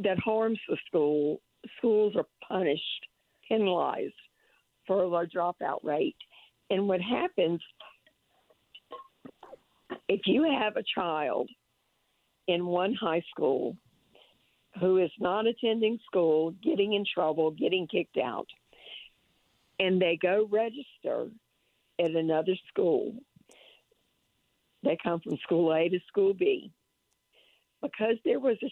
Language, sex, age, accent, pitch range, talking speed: English, female, 50-69, American, 165-220 Hz, 115 wpm